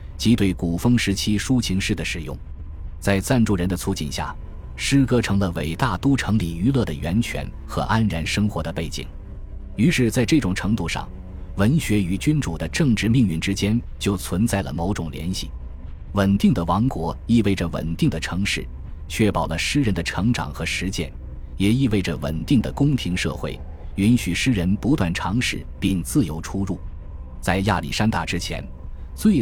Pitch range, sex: 80-105 Hz, male